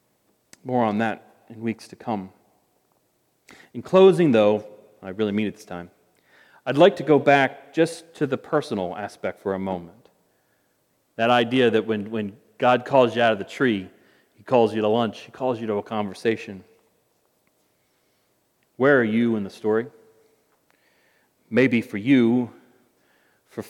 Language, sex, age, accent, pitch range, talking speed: English, male, 40-59, American, 110-140 Hz, 155 wpm